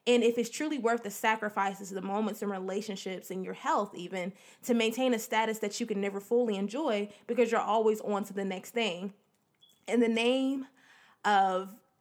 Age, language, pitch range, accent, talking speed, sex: 20-39, English, 200-240 Hz, American, 185 wpm, female